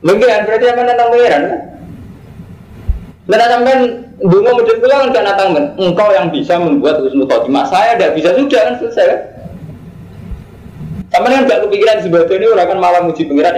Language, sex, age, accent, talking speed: Indonesian, male, 20-39, native, 160 wpm